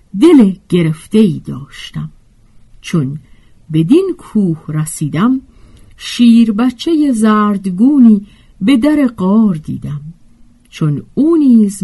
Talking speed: 85 wpm